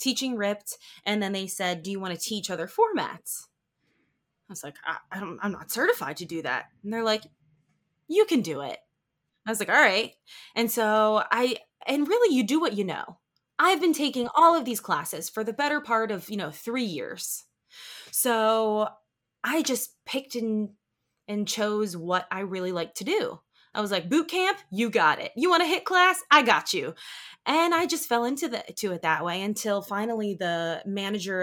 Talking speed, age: 195 wpm, 20-39